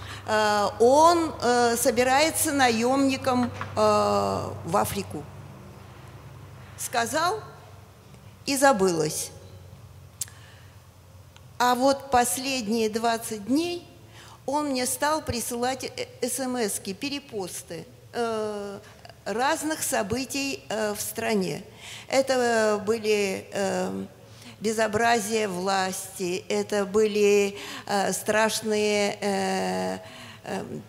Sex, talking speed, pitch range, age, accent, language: female, 65 wpm, 185-240 Hz, 50-69, native, Russian